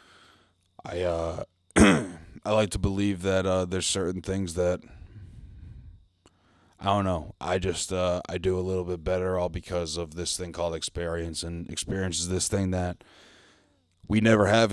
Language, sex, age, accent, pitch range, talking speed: English, male, 20-39, American, 85-100 Hz, 165 wpm